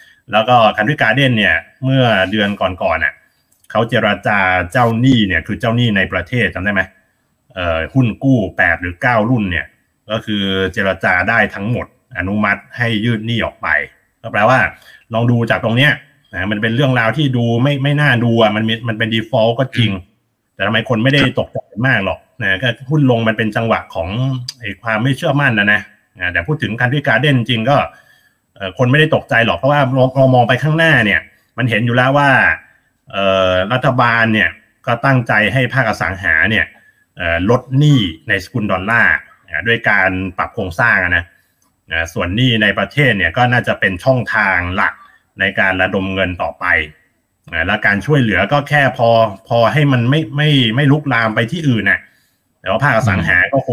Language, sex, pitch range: Thai, male, 100-130 Hz